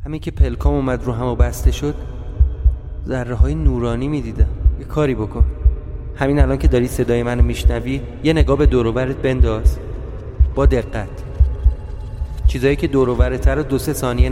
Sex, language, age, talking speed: male, Persian, 30-49, 155 wpm